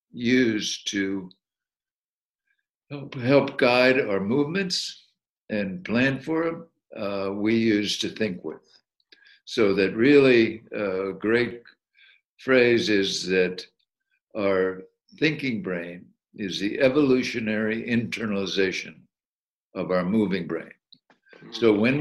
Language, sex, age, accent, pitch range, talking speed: English, male, 60-79, American, 100-130 Hz, 100 wpm